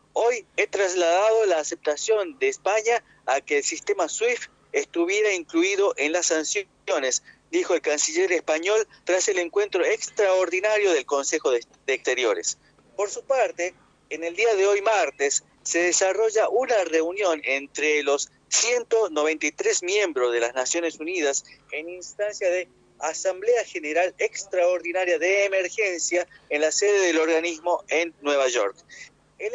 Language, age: Spanish, 40-59